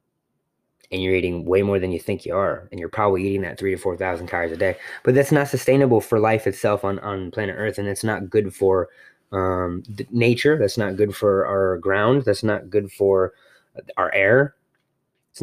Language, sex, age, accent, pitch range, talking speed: English, male, 20-39, American, 100-120 Hz, 205 wpm